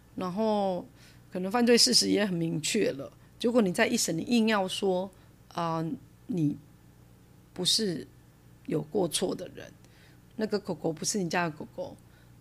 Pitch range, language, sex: 145-200 Hz, Chinese, female